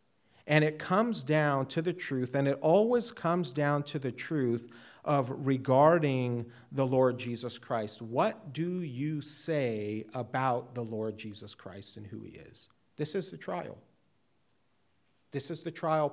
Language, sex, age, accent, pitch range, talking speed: English, male, 40-59, American, 115-155 Hz, 155 wpm